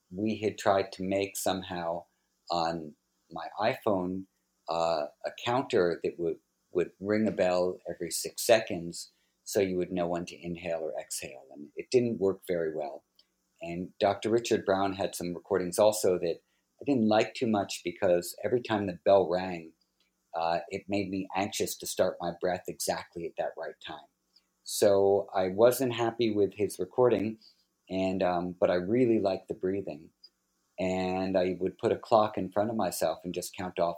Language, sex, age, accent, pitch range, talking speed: English, male, 50-69, American, 85-105 Hz, 175 wpm